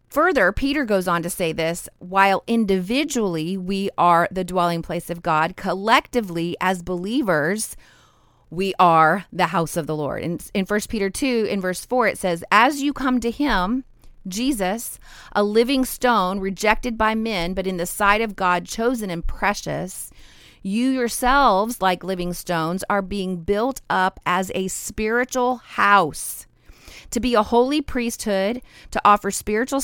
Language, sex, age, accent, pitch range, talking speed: English, female, 30-49, American, 185-235 Hz, 155 wpm